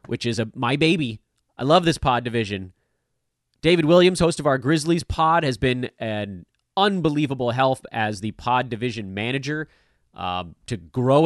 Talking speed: 160 wpm